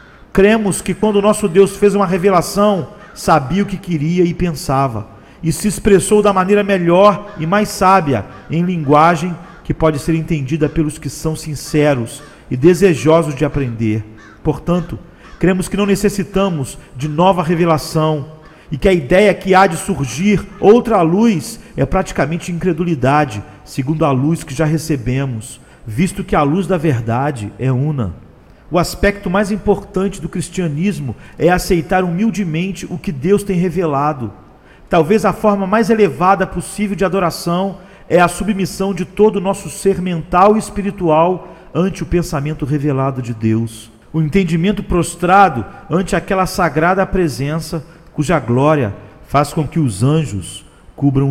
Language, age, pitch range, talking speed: Portuguese, 40-59, 145-190 Hz, 145 wpm